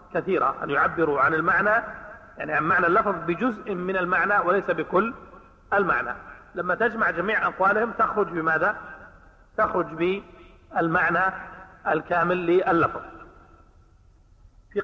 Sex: male